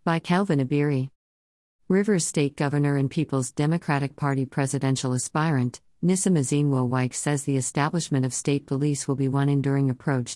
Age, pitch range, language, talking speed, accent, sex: 50-69, 130-160 Hz, English, 145 wpm, American, female